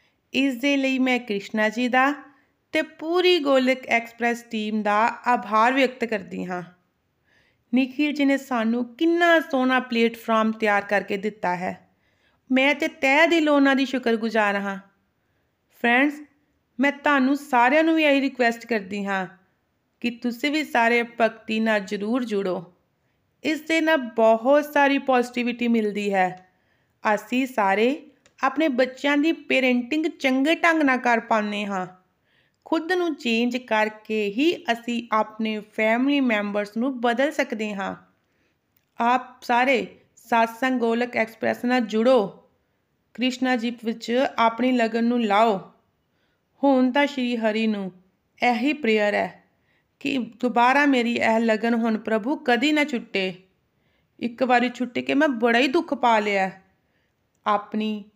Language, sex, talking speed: Punjabi, female, 120 wpm